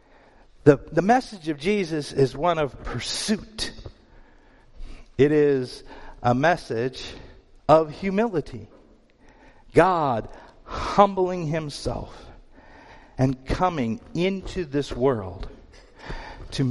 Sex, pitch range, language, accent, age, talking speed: male, 120-185 Hz, English, American, 50-69, 85 wpm